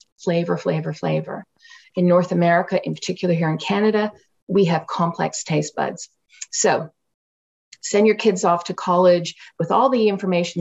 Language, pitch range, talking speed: English, 165-200 Hz, 155 wpm